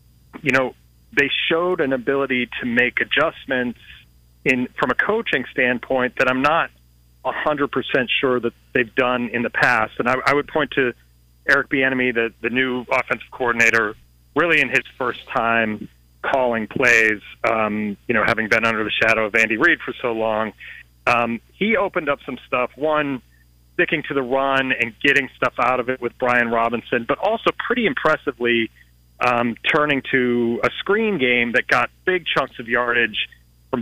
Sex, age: male, 40-59